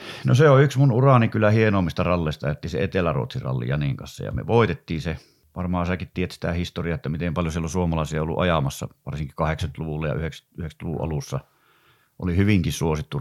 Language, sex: Finnish, male